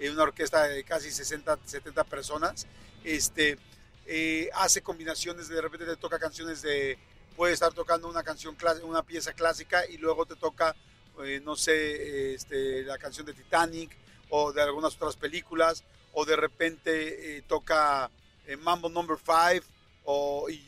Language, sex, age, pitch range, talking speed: Spanish, male, 50-69, 150-170 Hz, 165 wpm